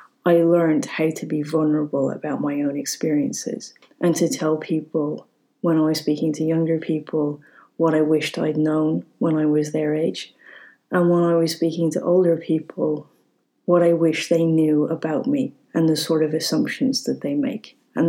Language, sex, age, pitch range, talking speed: English, female, 30-49, 155-175 Hz, 180 wpm